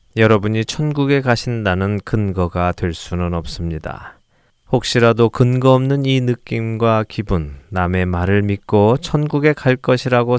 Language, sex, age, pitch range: Korean, male, 20-39, 90-120 Hz